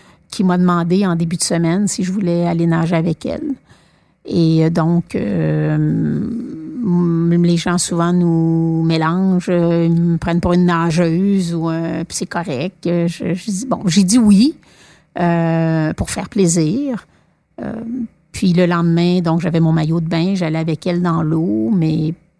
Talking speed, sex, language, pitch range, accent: 160 wpm, female, French, 165-195 Hz, Canadian